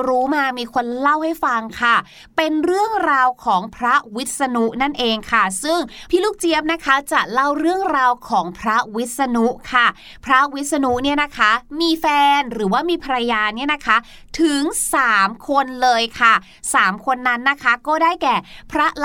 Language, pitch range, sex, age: Thai, 235-310 Hz, female, 20-39